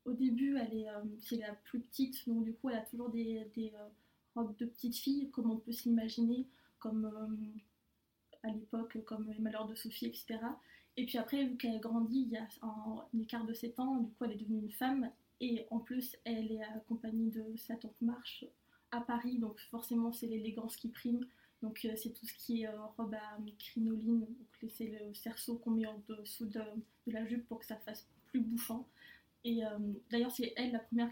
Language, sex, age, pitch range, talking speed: French, female, 20-39, 225-245 Hz, 215 wpm